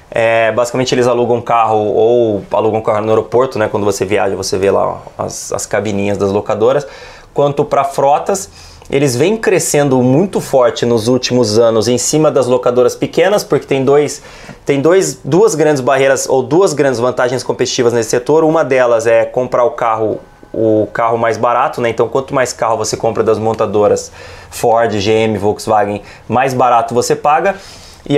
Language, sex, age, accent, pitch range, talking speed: English, male, 20-39, Brazilian, 115-140 Hz, 160 wpm